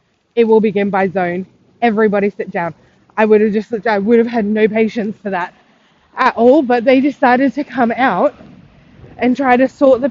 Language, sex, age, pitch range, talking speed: English, female, 20-39, 225-280 Hz, 190 wpm